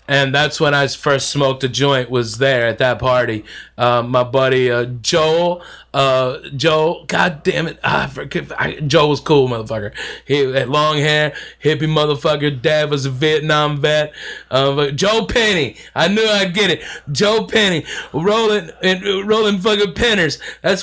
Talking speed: 170 wpm